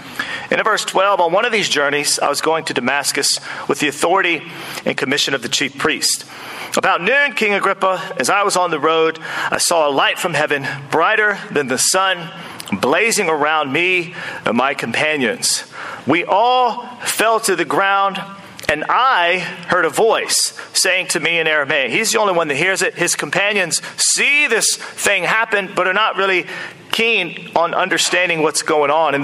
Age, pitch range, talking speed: 40-59, 160-210 Hz, 180 wpm